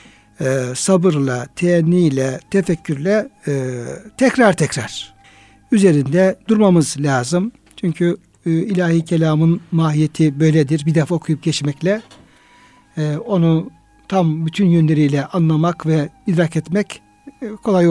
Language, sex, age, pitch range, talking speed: Turkish, male, 60-79, 155-190 Hz, 90 wpm